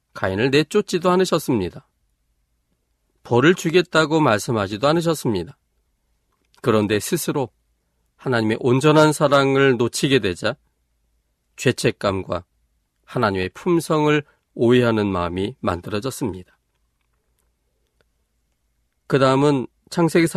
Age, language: 40-59, Korean